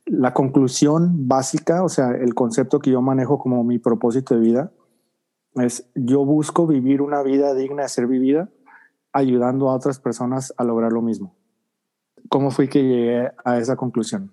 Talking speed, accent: 170 wpm, Mexican